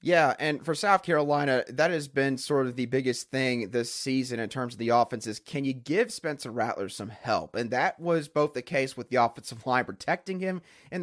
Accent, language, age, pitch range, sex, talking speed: American, English, 30-49, 125-160 Hz, male, 225 wpm